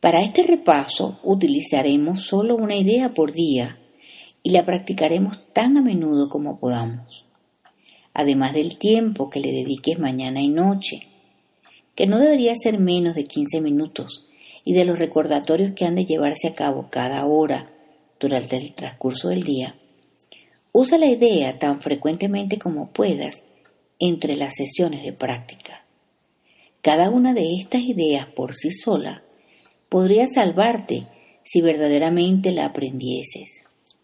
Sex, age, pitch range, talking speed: female, 50-69, 145-200 Hz, 135 wpm